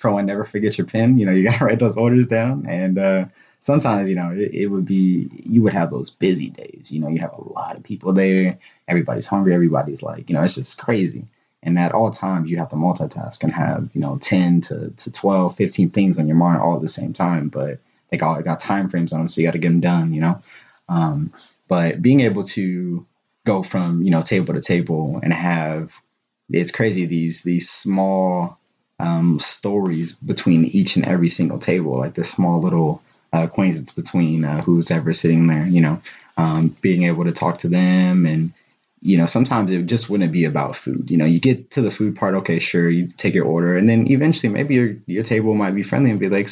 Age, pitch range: 20-39, 85-110 Hz